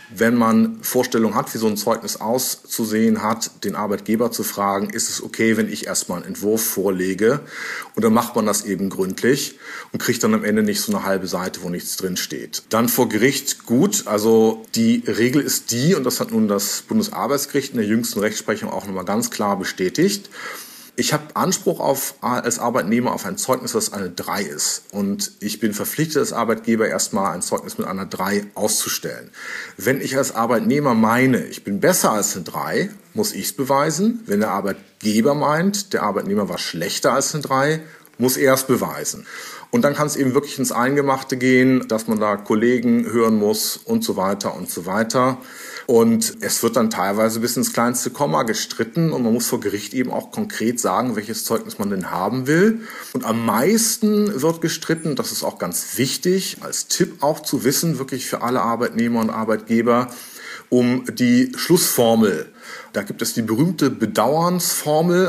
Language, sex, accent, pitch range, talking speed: German, male, German, 110-155 Hz, 185 wpm